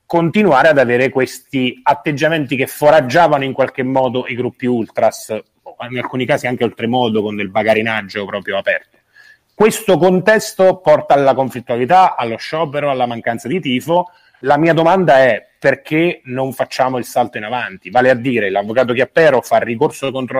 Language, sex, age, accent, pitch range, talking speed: Italian, male, 30-49, native, 110-145 Hz, 160 wpm